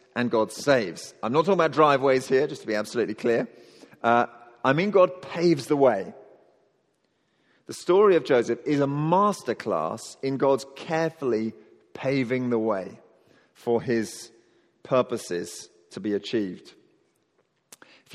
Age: 40-59